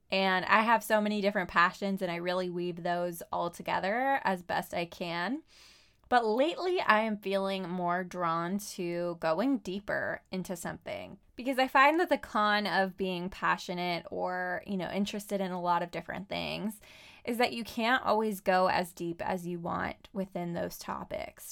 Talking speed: 175 wpm